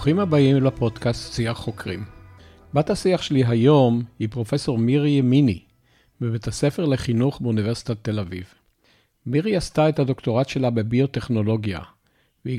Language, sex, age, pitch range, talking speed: Hebrew, male, 50-69, 115-140 Hz, 125 wpm